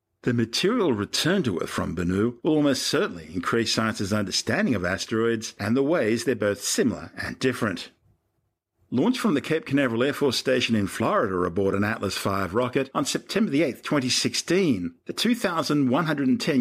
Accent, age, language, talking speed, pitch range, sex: Australian, 50-69, English, 150 wpm, 105-130 Hz, male